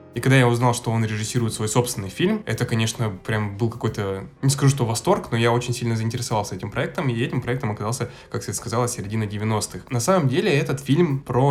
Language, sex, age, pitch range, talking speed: Russian, male, 10-29, 110-135 Hz, 215 wpm